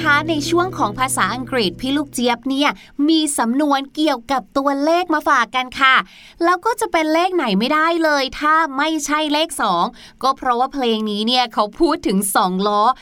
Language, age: Thai, 20-39